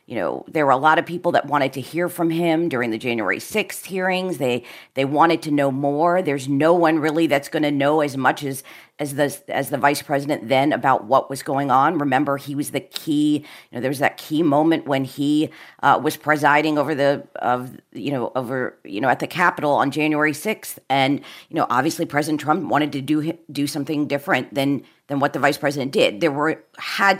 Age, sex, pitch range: 40-59, female, 140-165 Hz